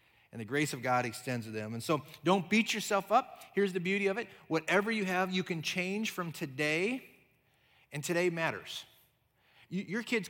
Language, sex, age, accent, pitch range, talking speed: English, male, 40-59, American, 135-210 Hz, 185 wpm